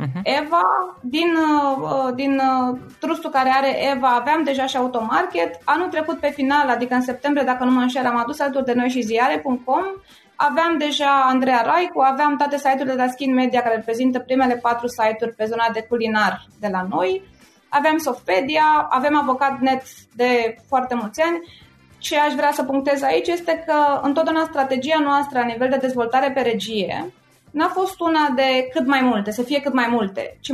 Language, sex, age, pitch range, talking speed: Romanian, female, 20-39, 245-295 Hz, 175 wpm